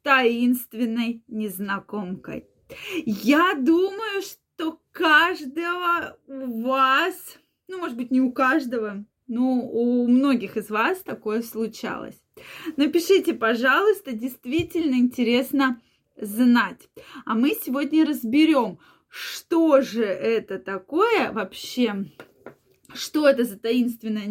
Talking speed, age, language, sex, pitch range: 95 wpm, 20-39, Russian, female, 230-300 Hz